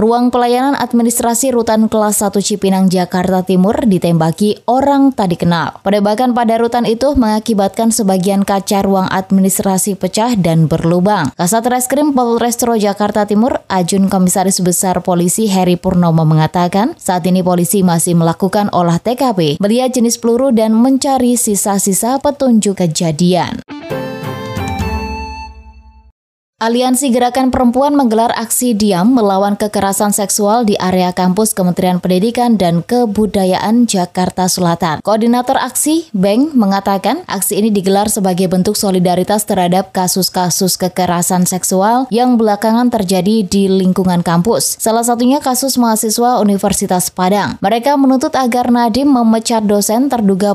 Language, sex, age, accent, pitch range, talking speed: Indonesian, female, 20-39, native, 185-235 Hz, 125 wpm